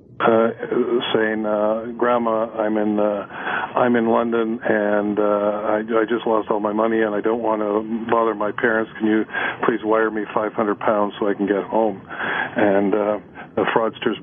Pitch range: 105-115 Hz